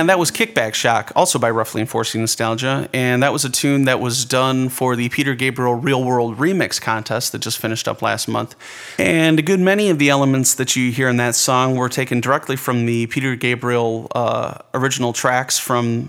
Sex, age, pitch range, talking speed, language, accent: male, 30-49, 120-140 Hz, 210 wpm, English, American